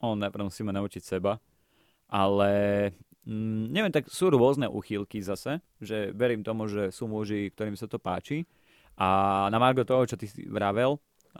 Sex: male